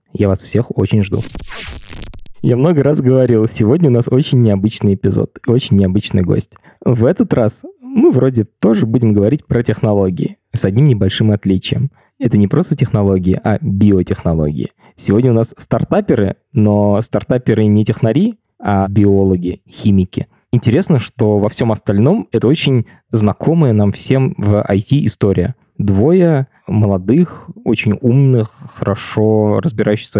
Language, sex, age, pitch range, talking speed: Russian, male, 20-39, 100-130 Hz, 135 wpm